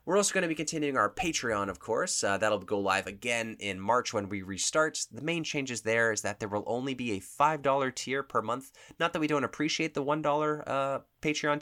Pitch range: 95-130 Hz